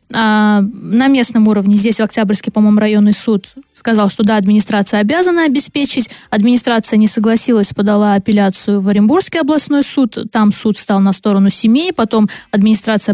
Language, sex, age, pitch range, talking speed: Russian, female, 20-39, 205-240 Hz, 145 wpm